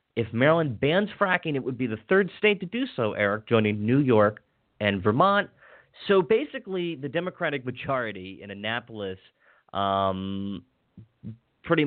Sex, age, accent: male, 30-49, American